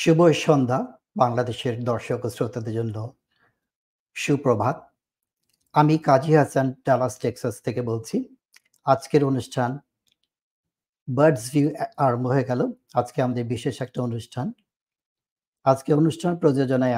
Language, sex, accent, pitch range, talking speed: Bengali, male, native, 120-150 Hz, 40 wpm